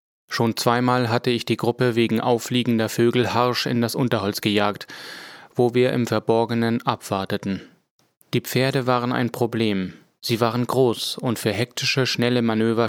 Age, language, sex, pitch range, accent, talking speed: 30-49, German, male, 110-125 Hz, German, 150 wpm